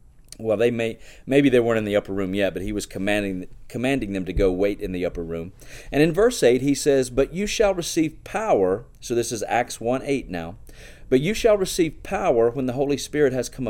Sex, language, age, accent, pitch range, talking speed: male, English, 40-59, American, 100-140 Hz, 230 wpm